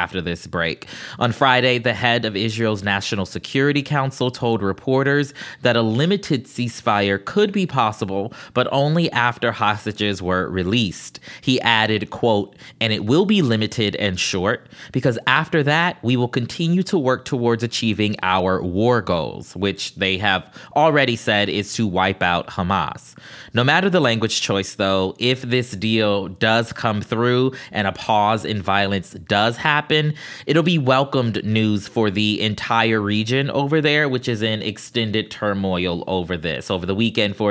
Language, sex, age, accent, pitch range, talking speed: English, male, 20-39, American, 105-130 Hz, 160 wpm